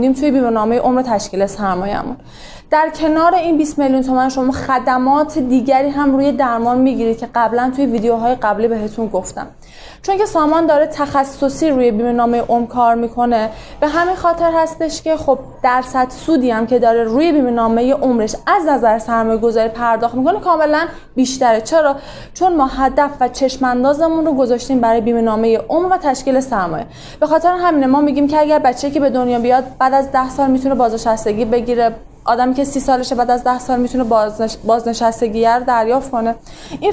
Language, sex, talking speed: Persian, female, 175 wpm